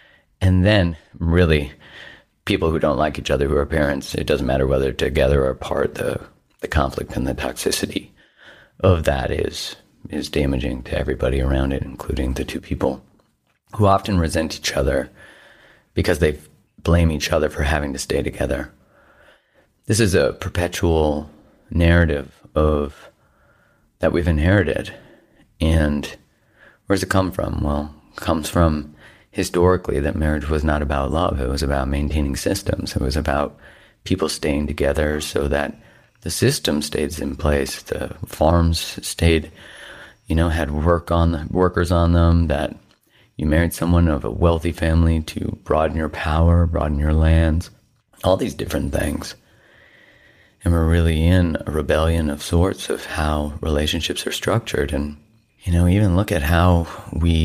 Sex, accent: male, American